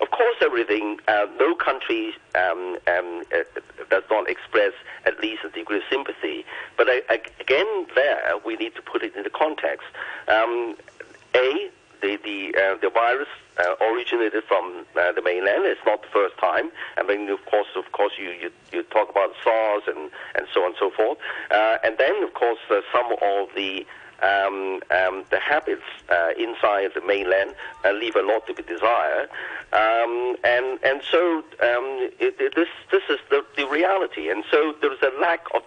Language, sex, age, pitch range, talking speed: English, male, 50-69, 305-435 Hz, 185 wpm